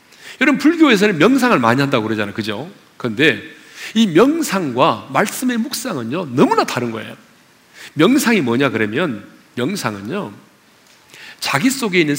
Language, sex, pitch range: Korean, male, 180-305 Hz